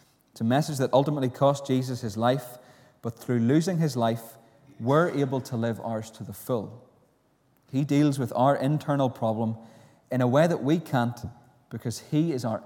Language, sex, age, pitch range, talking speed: English, male, 30-49, 115-140 Hz, 180 wpm